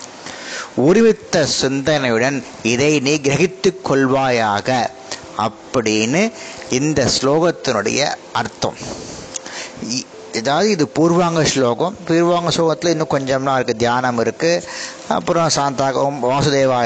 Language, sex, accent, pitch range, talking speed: Tamil, male, native, 130-175 Hz, 85 wpm